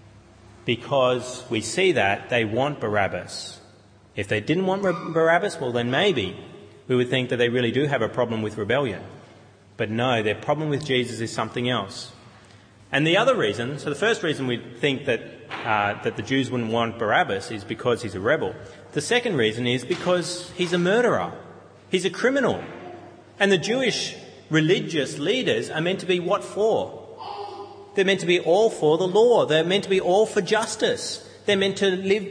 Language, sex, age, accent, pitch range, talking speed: English, male, 30-49, Australian, 115-185 Hz, 185 wpm